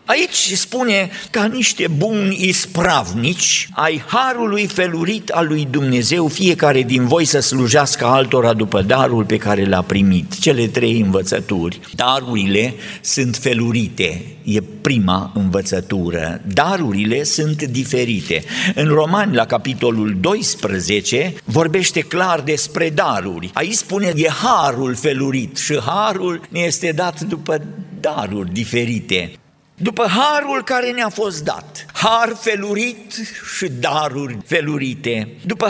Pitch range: 130-205 Hz